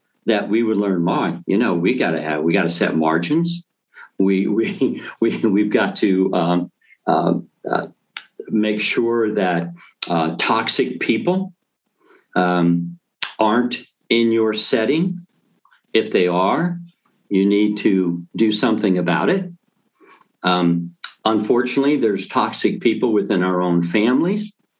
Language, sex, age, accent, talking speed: English, male, 50-69, American, 135 wpm